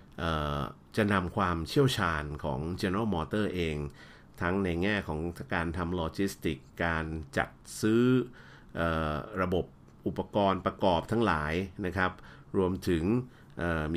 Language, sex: Thai, male